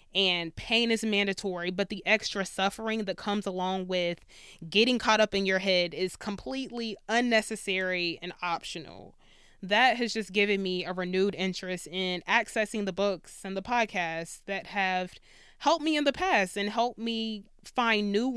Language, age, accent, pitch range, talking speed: English, 20-39, American, 190-240 Hz, 165 wpm